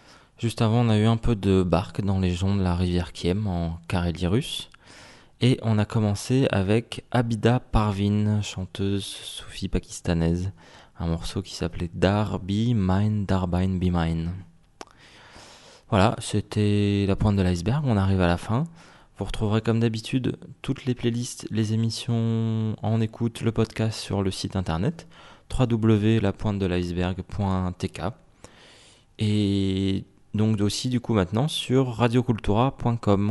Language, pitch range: English, 95-115 Hz